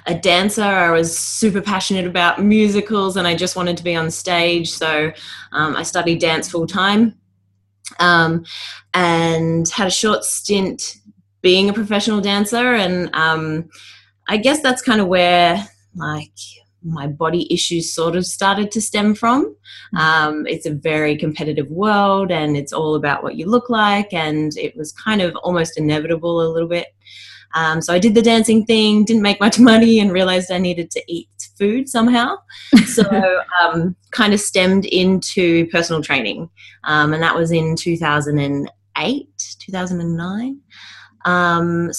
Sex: female